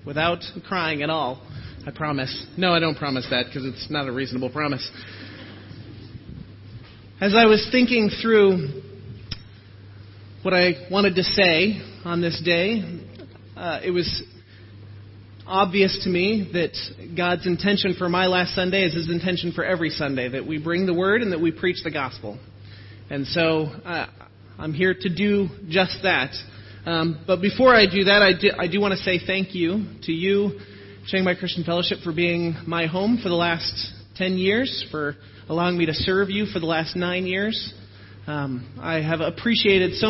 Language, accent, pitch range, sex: English, American, 125-185 Hz, male